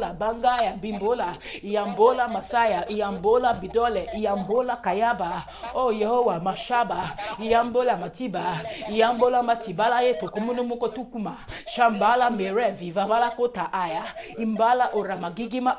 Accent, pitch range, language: Nigerian, 205-245 Hz, English